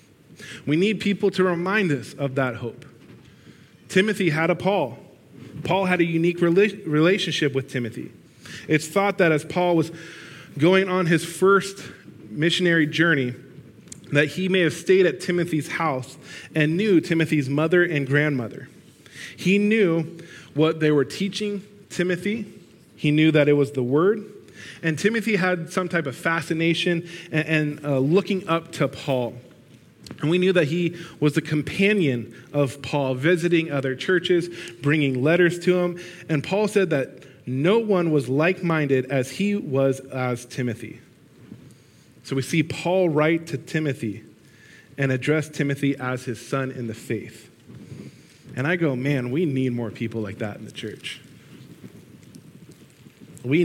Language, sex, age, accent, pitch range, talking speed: English, male, 20-39, American, 135-175 Hz, 150 wpm